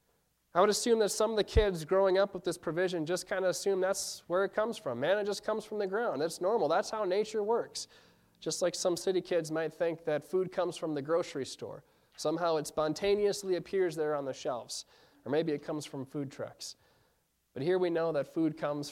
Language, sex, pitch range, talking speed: English, male, 150-200 Hz, 225 wpm